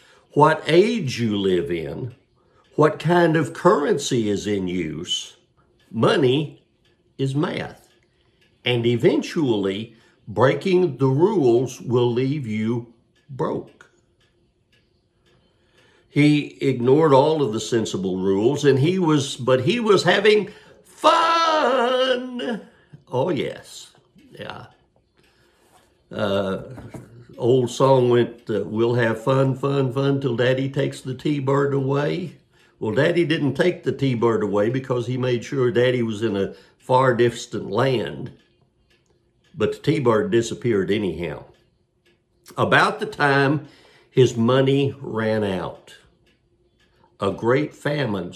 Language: English